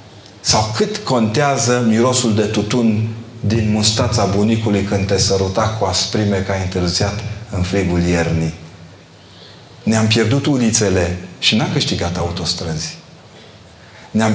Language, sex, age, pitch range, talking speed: Romanian, male, 40-59, 95-120 Hz, 115 wpm